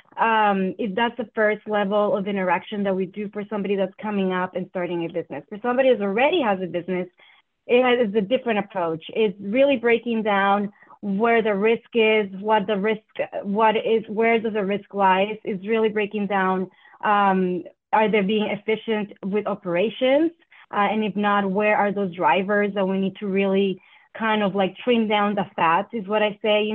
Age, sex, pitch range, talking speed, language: 20-39, female, 195-225 Hz, 195 wpm, English